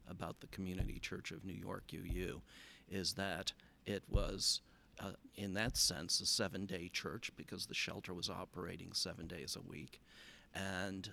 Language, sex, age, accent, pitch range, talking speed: English, male, 50-69, American, 95-110 Hz, 155 wpm